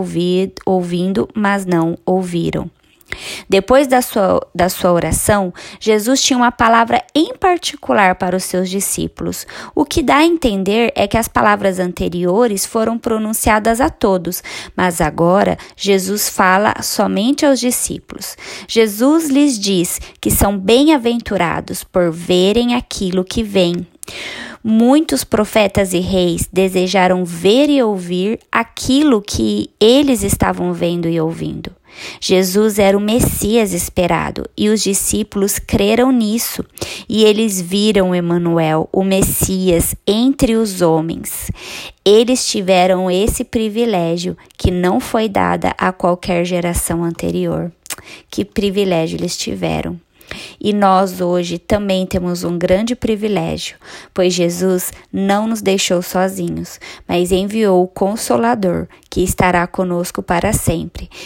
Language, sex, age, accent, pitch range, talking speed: Portuguese, female, 20-39, Brazilian, 180-225 Hz, 120 wpm